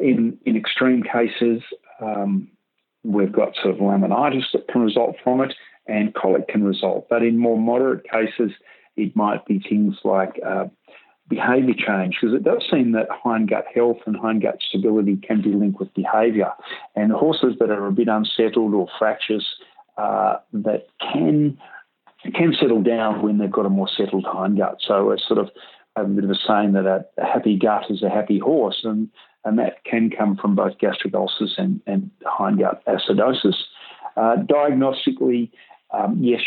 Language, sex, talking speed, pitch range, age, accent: English, male, 170 wpm, 100-140 Hz, 50-69, Australian